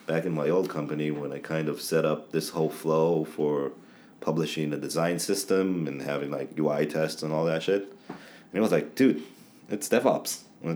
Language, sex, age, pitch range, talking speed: English, male, 30-49, 75-95 Hz, 195 wpm